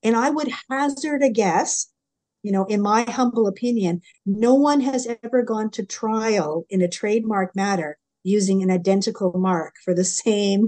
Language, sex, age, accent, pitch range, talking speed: English, female, 50-69, American, 185-230 Hz, 170 wpm